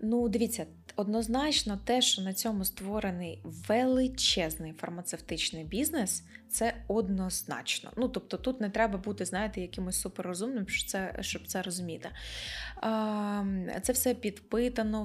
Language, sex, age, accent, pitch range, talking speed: Ukrainian, female, 20-39, native, 190-235 Hz, 115 wpm